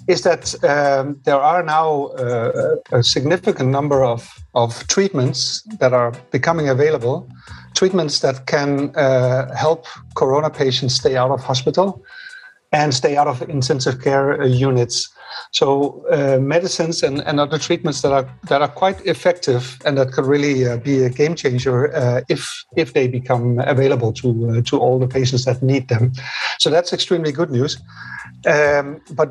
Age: 60-79